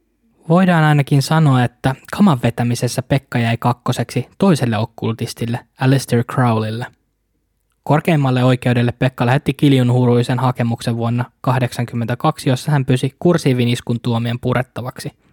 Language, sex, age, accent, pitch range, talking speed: Finnish, male, 20-39, native, 120-135 Hz, 105 wpm